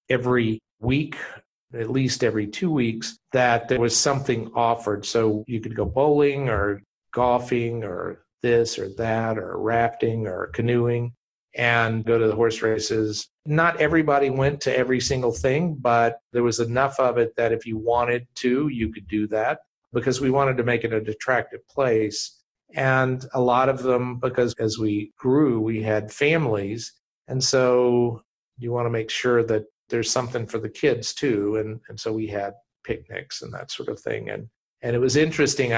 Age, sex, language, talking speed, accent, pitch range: 50-69, male, English, 180 wpm, American, 110-130 Hz